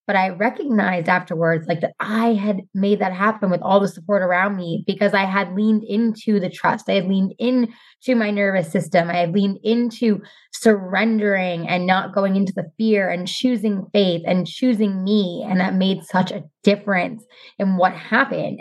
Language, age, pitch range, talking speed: English, 20-39, 180-220 Hz, 185 wpm